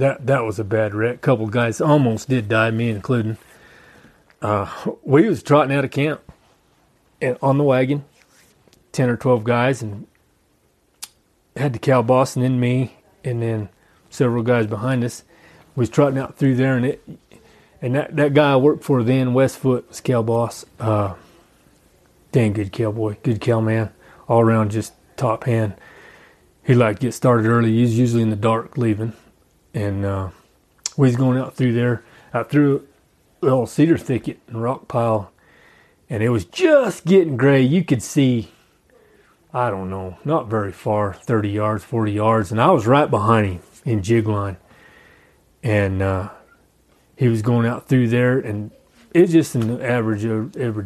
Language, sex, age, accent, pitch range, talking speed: English, male, 30-49, American, 110-130 Hz, 175 wpm